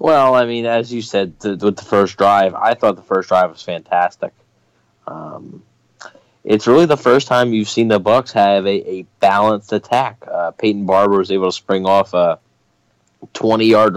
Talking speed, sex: 185 wpm, male